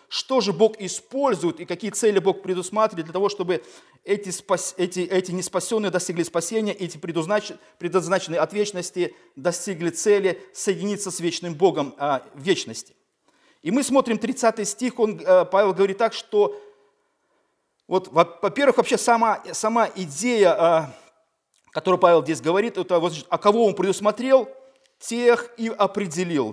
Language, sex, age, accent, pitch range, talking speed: Russian, male, 40-59, native, 175-220 Hz, 140 wpm